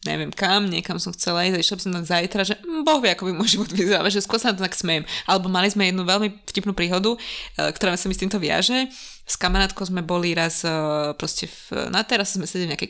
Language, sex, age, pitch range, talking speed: Slovak, female, 20-39, 180-210 Hz, 230 wpm